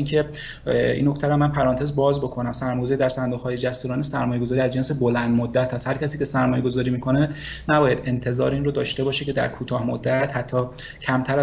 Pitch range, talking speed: 125-150 Hz, 195 wpm